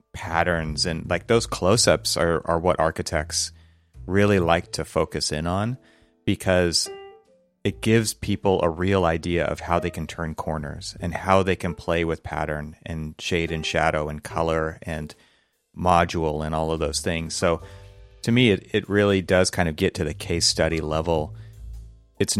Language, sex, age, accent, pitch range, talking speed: English, male, 30-49, American, 80-100 Hz, 170 wpm